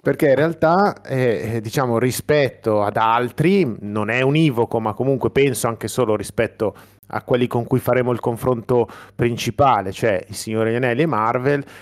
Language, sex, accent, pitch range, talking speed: Italian, male, native, 110-135 Hz, 155 wpm